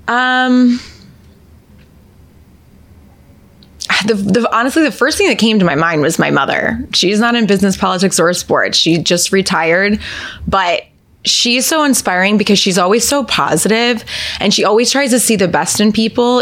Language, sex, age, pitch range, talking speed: English, female, 20-39, 175-230 Hz, 155 wpm